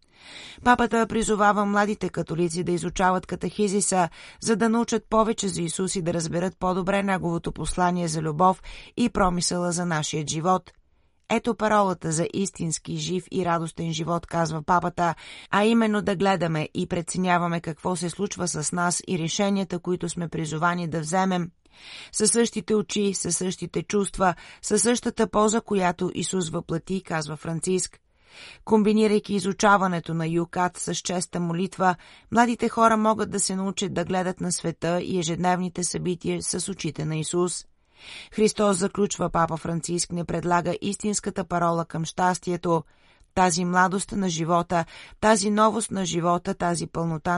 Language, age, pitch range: Bulgarian, 30-49, 170-200 Hz